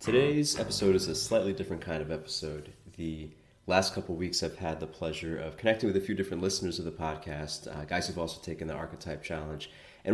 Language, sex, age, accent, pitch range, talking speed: English, male, 20-39, American, 80-95 Hz, 215 wpm